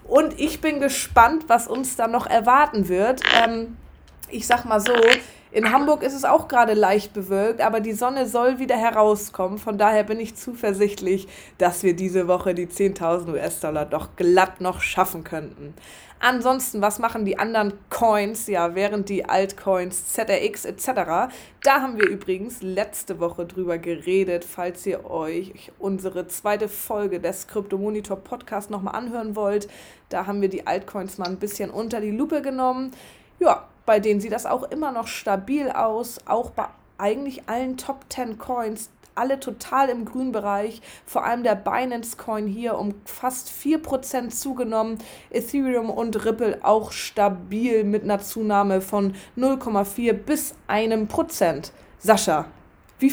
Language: German